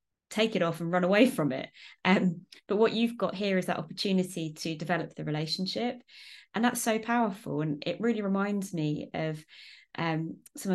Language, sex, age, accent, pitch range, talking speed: English, female, 20-39, British, 160-200 Hz, 185 wpm